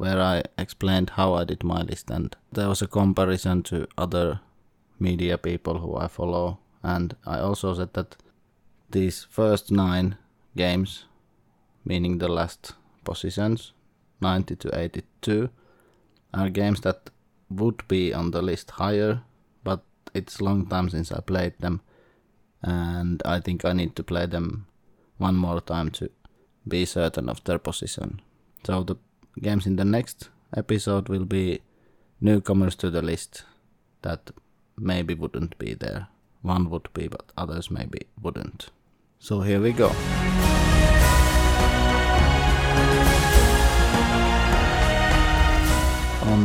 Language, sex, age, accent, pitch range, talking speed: English, male, 30-49, Finnish, 85-100 Hz, 130 wpm